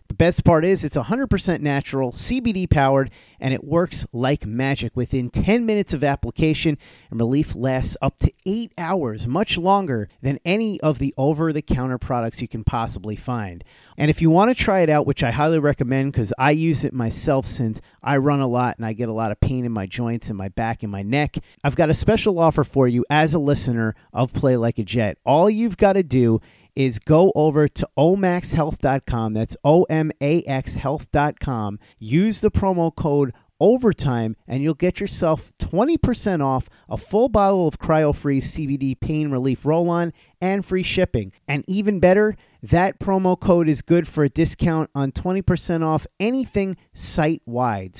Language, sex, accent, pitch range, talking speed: English, male, American, 125-175 Hz, 180 wpm